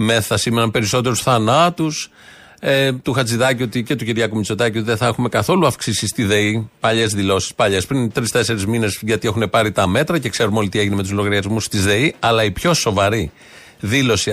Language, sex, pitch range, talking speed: Greek, male, 110-140 Hz, 195 wpm